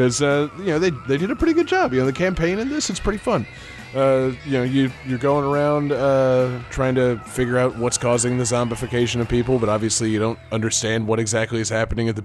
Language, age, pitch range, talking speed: English, 30-49, 105-125 Hz, 240 wpm